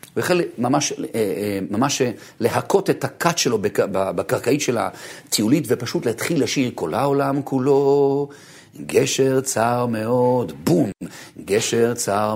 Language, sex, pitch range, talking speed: Hebrew, male, 120-195 Hz, 110 wpm